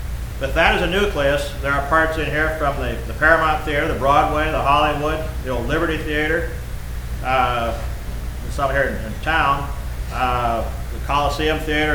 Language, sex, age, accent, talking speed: English, male, 40-59, American, 165 wpm